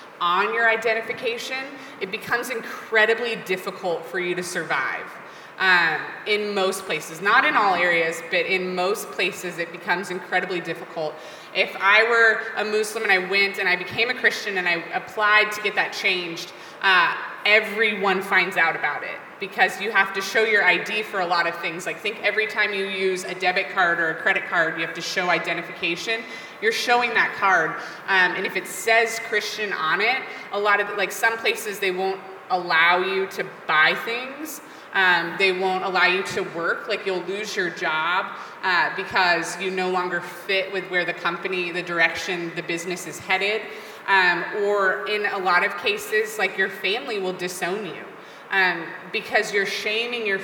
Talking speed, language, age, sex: 185 wpm, English, 20-39, female